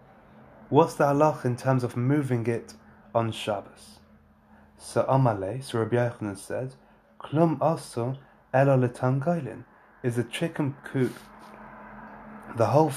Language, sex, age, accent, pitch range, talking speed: English, male, 30-49, British, 120-150 Hz, 105 wpm